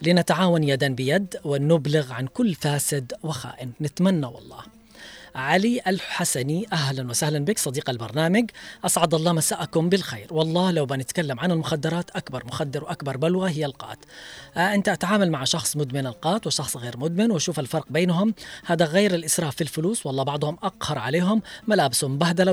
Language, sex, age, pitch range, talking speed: Arabic, female, 30-49, 140-180 Hz, 150 wpm